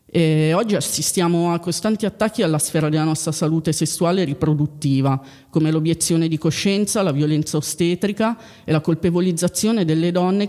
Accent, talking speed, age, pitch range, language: native, 145 wpm, 30-49, 150-185 Hz, Italian